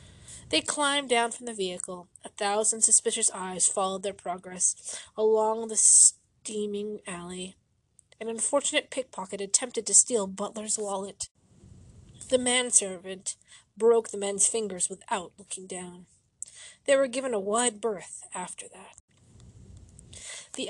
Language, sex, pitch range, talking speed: English, female, 180-225 Hz, 125 wpm